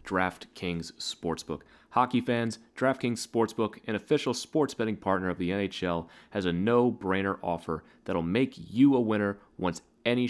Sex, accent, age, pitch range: male, American, 30-49, 95-115 Hz